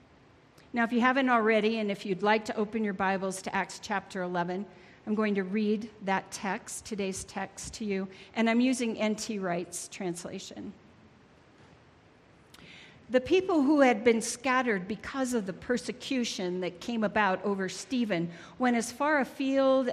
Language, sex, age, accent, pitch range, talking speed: English, female, 50-69, American, 195-265 Hz, 155 wpm